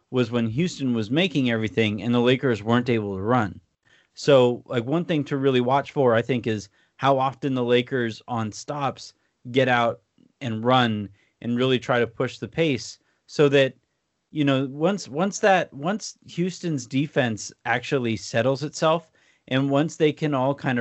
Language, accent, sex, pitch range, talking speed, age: English, American, male, 115-140 Hz, 175 wpm, 30-49